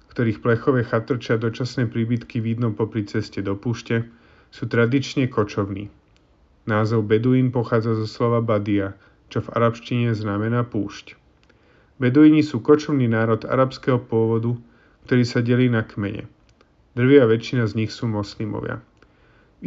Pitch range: 110-125 Hz